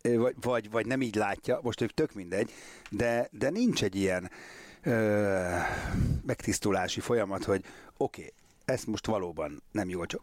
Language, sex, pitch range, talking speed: Hungarian, male, 95-115 Hz, 160 wpm